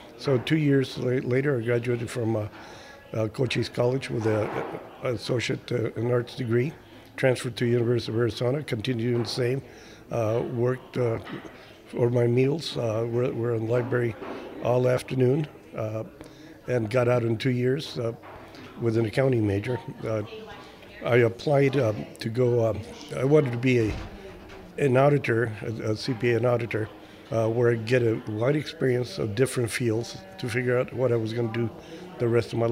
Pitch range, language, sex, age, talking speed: 115-130 Hz, English, male, 60-79, 175 wpm